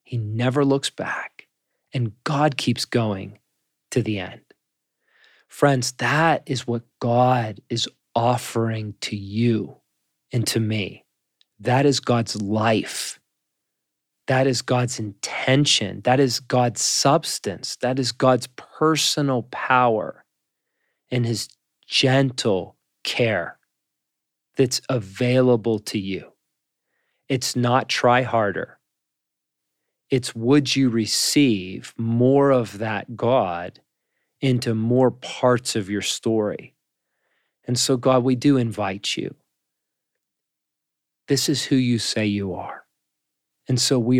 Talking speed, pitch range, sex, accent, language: 115 wpm, 110-130 Hz, male, American, English